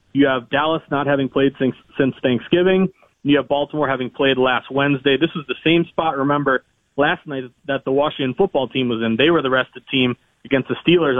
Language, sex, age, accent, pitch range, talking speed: English, male, 30-49, American, 130-150 Hz, 215 wpm